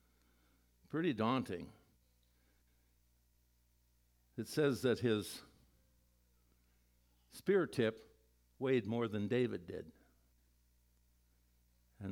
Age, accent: 60-79, American